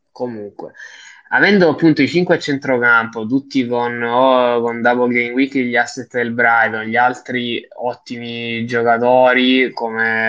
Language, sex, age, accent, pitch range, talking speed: Italian, male, 10-29, native, 110-125 Hz, 135 wpm